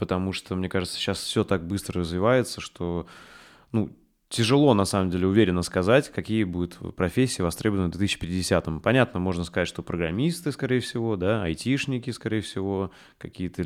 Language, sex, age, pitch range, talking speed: Russian, male, 20-39, 90-110 Hz, 150 wpm